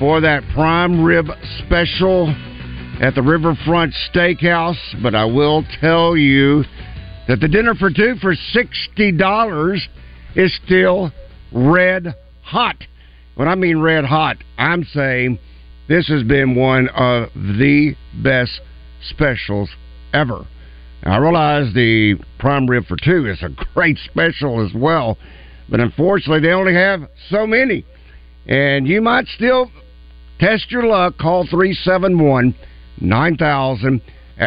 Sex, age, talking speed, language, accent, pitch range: male, 50-69, 120 wpm, English, American, 110-175 Hz